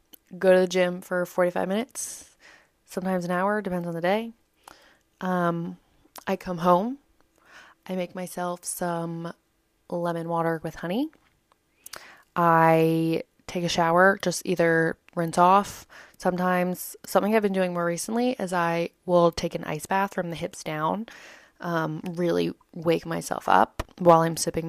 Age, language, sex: 20-39, English, female